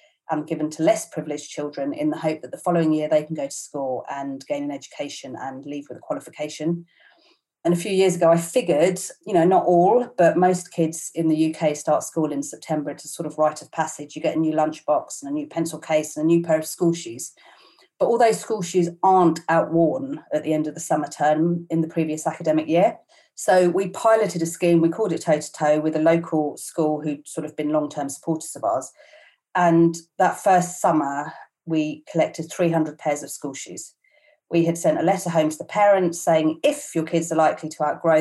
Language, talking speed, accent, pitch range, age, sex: English, 225 wpm, British, 150-175 Hz, 40-59, female